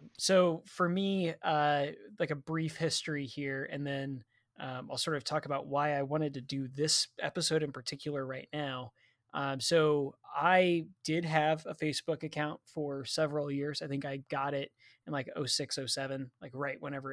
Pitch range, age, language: 135-165 Hz, 20-39, English